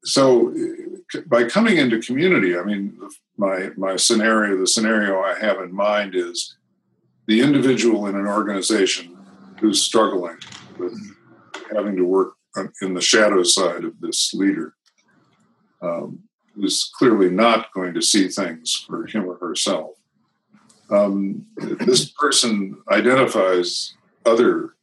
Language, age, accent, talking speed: English, 50-69, American, 125 wpm